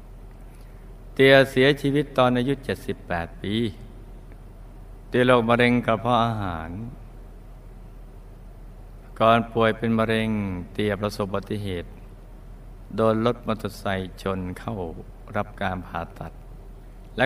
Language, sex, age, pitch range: Thai, male, 60-79, 100-125 Hz